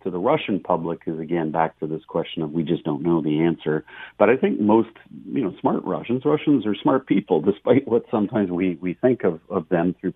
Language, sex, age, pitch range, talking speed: English, male, 50-69, 85-100 Hz, 225 wpm